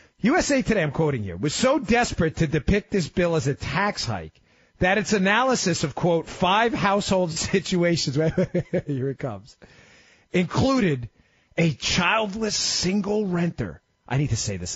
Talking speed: 155 wpm